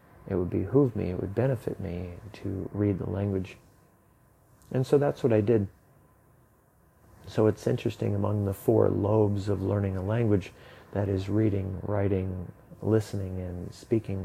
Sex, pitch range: male, 95-110 Hz